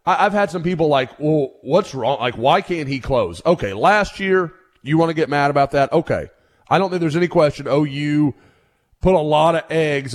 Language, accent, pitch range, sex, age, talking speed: English, American, 125-165 Hz, male, 30-49, 220 wpm